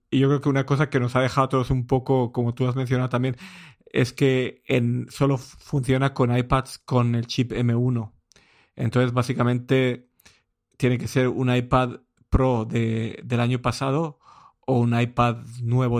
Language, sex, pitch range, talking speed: Spanish, male, 120-130 Hz, 175 wpm